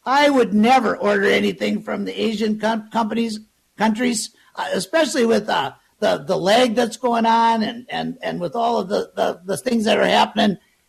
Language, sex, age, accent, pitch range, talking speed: English, male, 60-79, American, 220-260 Hz, 170 wpm